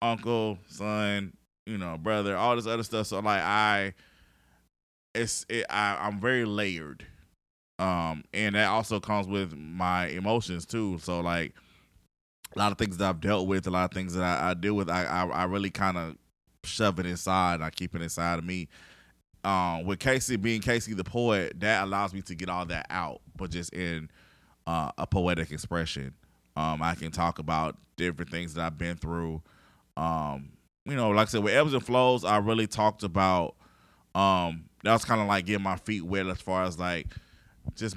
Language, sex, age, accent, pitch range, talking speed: English, male, 20-39, American, 85-105 Hz, 200 wpm